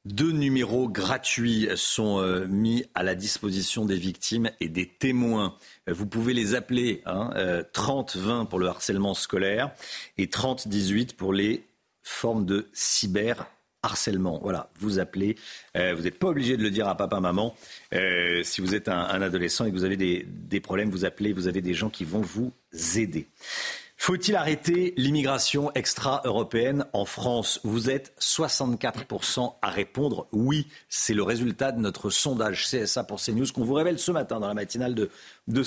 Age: 50-69